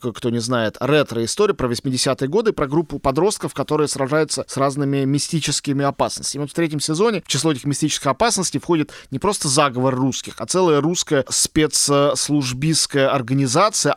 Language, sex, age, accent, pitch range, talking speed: Russian, male, 20-39, native, 130-155 Hz, 165 wpm